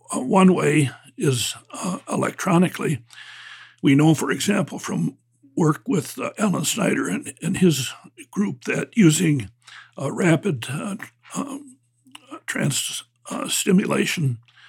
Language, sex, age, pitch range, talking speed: English, male, 60-79, 135-195 Hz, 110 wpm